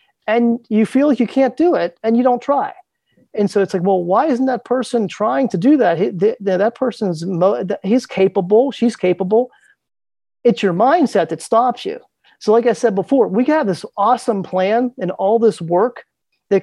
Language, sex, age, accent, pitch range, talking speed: English, male, 40-59, American, 180-230 Hz, 200 wpm